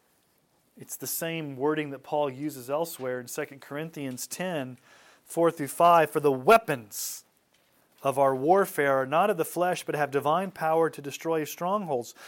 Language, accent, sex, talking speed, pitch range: English, American, male, 150 wpm, 140-175 Hz